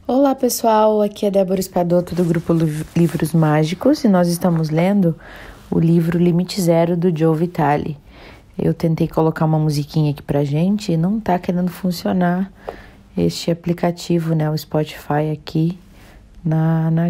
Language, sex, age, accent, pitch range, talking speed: Portuguese, female, 40-59, Brazilian, 155-190 Hz, 145 wpm